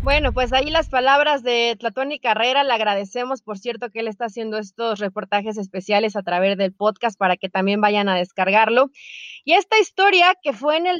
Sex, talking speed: female, 200 wpm